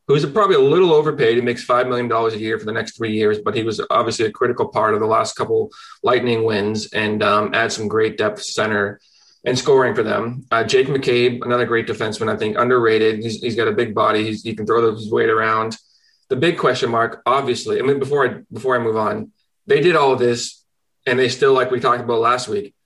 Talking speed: 235 wpm